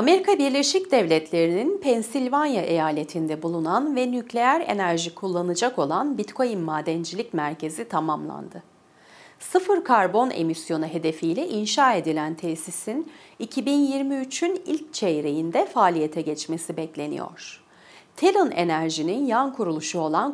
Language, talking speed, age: Turkish, 95 wpm, 40-59